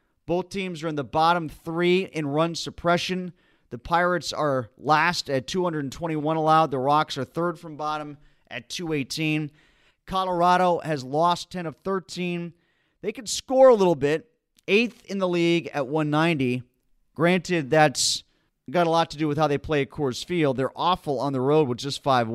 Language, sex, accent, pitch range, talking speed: English, male, American, 140-175 Hz, 175 wpm